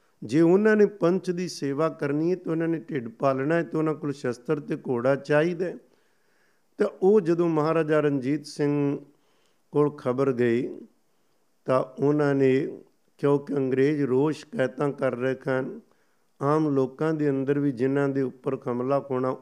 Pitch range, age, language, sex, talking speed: 130-155 Hz, 50-69, Punjabi, male, 155 wpm